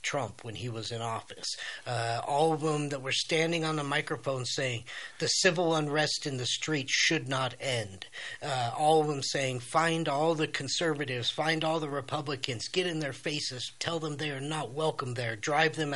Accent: American